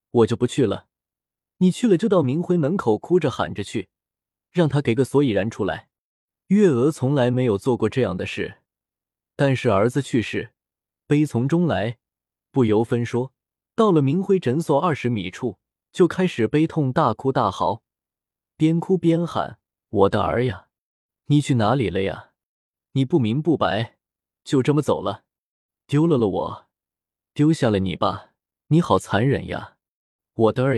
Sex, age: male, 20-39